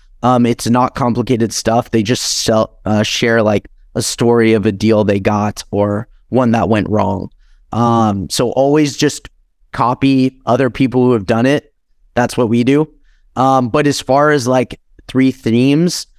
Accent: American